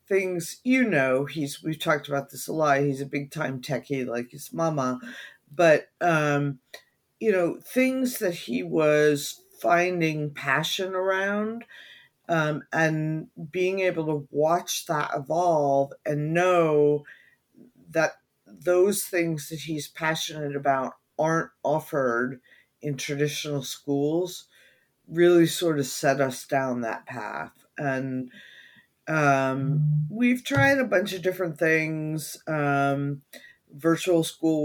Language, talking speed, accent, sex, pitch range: English, 125 wpm, American, female, 140-170 Hz